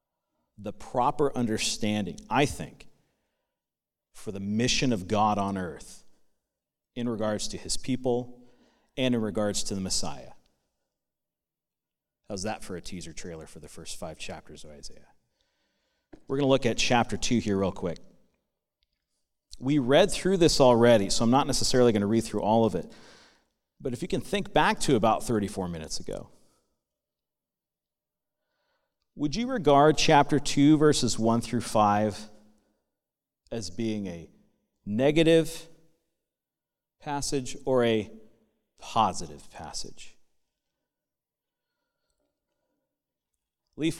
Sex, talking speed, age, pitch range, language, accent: male, 125 wpm, 40-59, 105-150 Hz, English, American